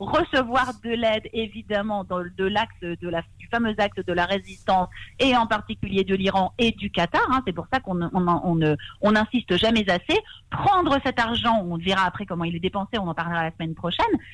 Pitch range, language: 185-245 Hz, Hebrew